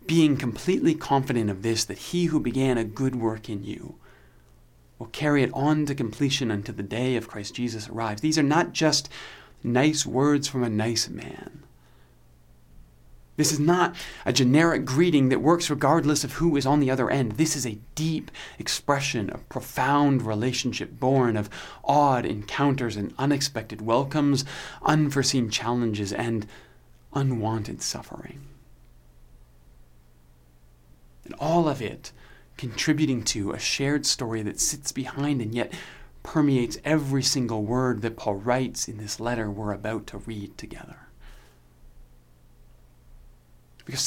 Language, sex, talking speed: English, male, 140 wpm